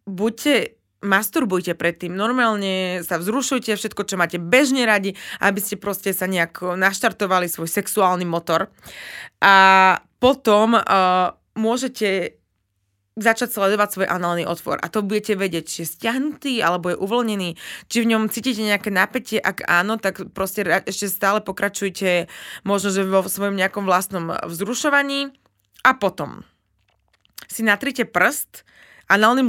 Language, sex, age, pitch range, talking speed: Slovak, female, 20-39, 175-215 Hz, 130 wpm